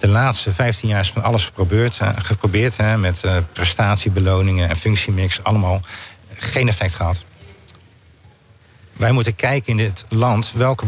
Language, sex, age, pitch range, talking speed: Dutch, male, 50-69, 95-115 Hz, 150 wpm